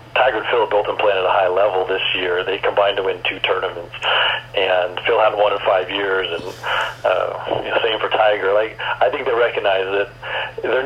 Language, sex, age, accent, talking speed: English, male, 40-59, American, 210 wpm